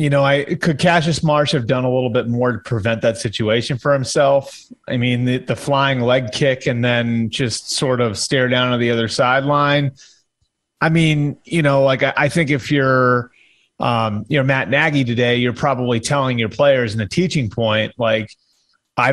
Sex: male